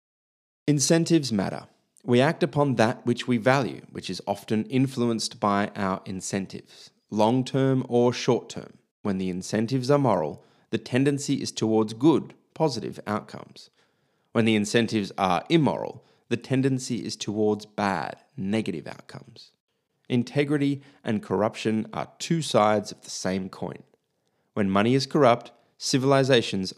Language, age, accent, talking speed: English, 30-49, Australian, 135 wpm